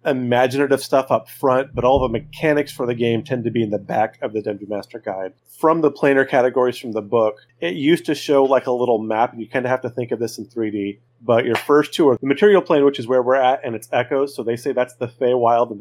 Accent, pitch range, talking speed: American, 115-135 Hz, 270 wpm